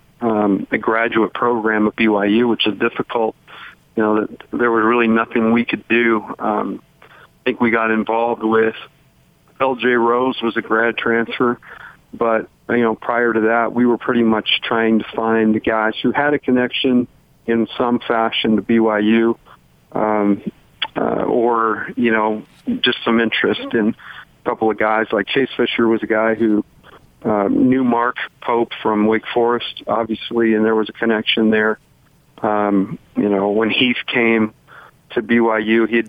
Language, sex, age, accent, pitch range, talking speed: English, male, 50-69, American, 110-120 Hz, 160 wpm